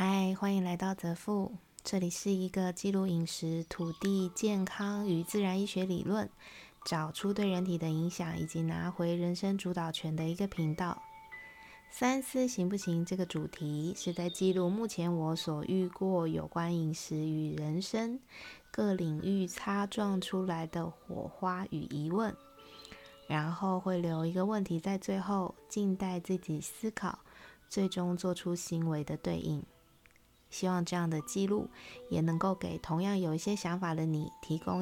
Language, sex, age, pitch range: Chinese, female, 20-39, 165-195 Hz